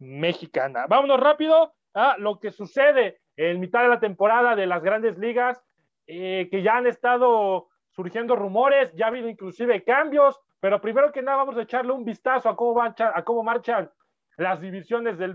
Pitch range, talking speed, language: 175-230 Hz, 170 wpm, Spanish